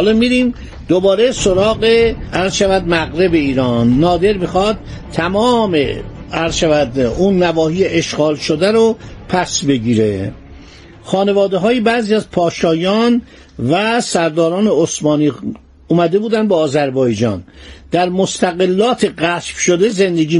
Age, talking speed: 60-79, 105 wpm